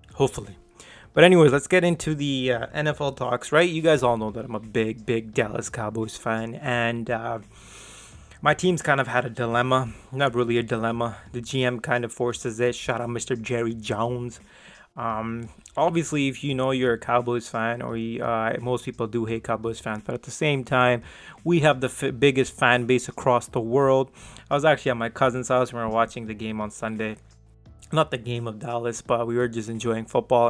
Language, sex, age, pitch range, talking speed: English, male, 20-39, 115-135 Hz, 210 wpm